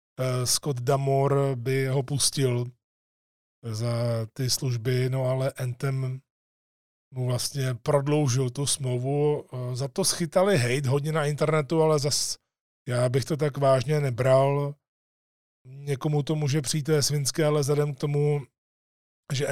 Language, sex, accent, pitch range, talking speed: Czech, male, native, 130-150 Hz, 130 wpm